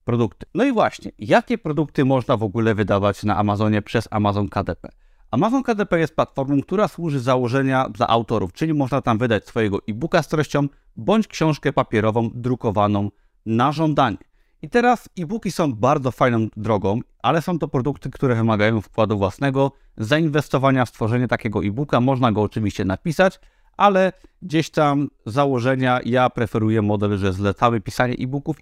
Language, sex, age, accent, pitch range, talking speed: Polish, male, 30-49, native, 110-150 Hz, 155 wpm